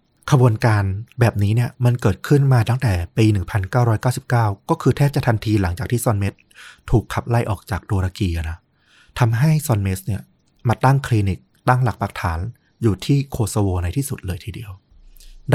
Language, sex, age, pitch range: Thai, male, 20-39, 95-120 Hz